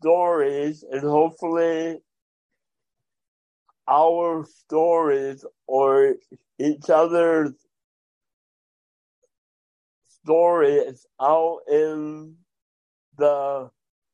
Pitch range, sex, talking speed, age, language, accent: 140-175 Hz, male, 50 wpm, 60-79, English, American